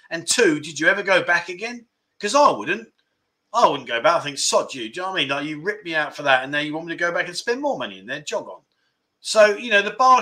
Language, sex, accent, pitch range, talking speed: English, male, British, 155-220 Hz, 305 wpm